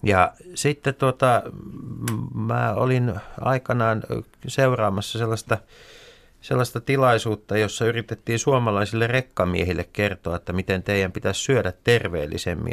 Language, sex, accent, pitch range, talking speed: Finnish, male, native, 100-130 Hz, 100 wpm